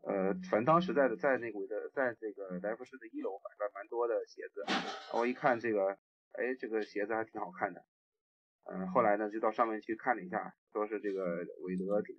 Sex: male